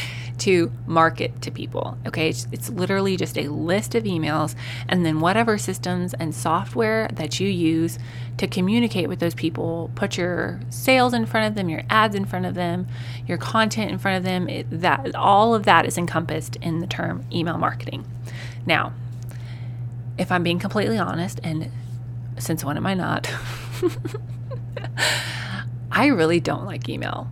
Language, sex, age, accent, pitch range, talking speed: English, female, 20-39, American, 120-165 Hz, 165 wpm